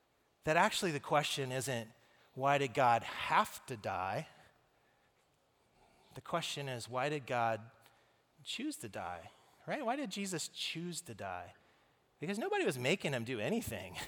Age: 30-49